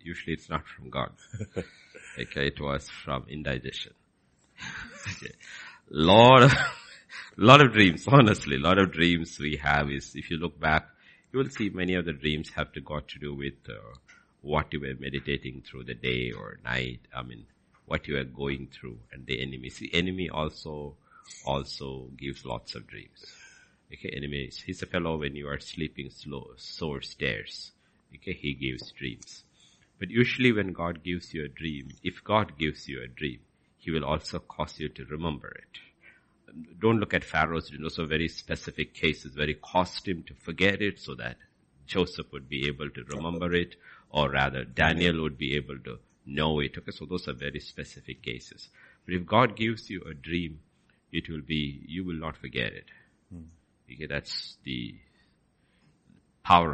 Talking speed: 175 wpm